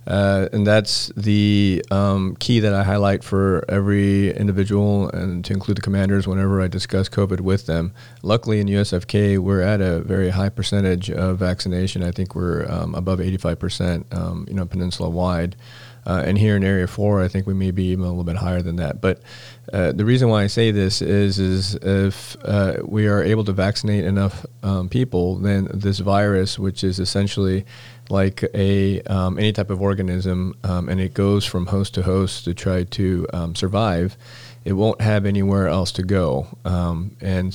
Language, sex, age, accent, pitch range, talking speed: English, male, 40-59, American, 90-100 Hz, 190 wpm